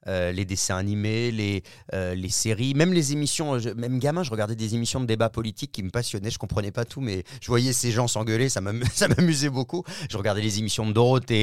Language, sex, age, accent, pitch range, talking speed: French, male, 30-49, French, 115-145 Hz, 240 wpm